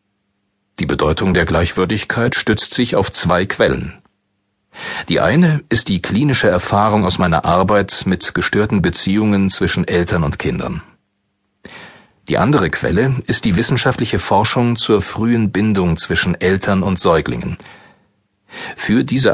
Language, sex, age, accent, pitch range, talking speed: German, male, 40-59, German, 95-120 Hz, 125 wpm